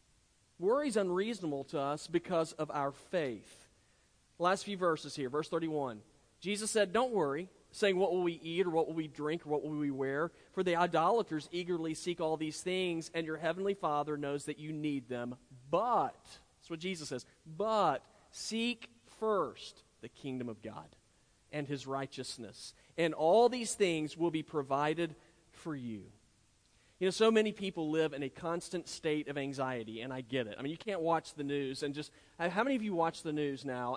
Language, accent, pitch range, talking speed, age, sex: English, American, 140-195 Hz, 190 wpm, 40-59, male